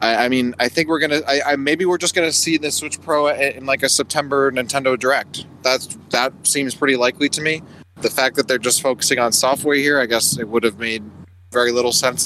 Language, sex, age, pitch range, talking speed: English, male, 20-39, 115-145 Hz, 235 wpm